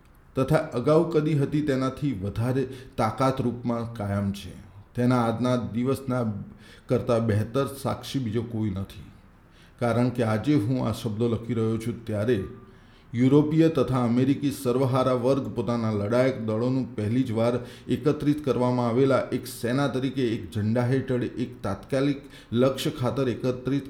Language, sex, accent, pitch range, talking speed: Gujarati, male, native, 115-130 Hz, 130 wpm